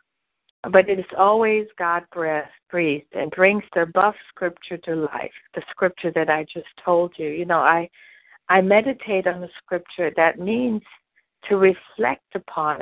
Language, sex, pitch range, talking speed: English, female, 170-210 Hz, 155 wpm